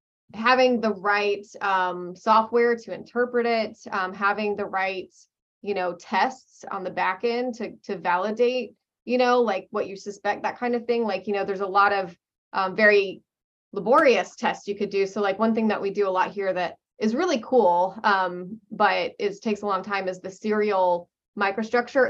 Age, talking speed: 20-39, 195 wpm